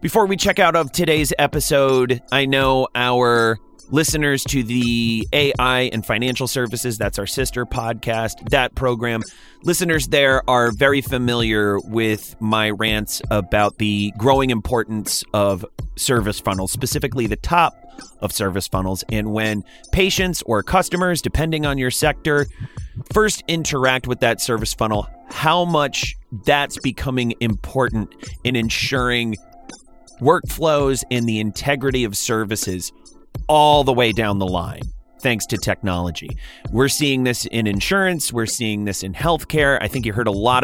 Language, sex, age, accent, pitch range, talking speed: English, male, 30-49, American, 110-145 Hz, 145 wpm